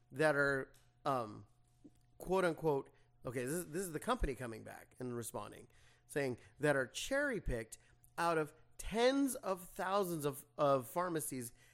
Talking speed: 150 wpm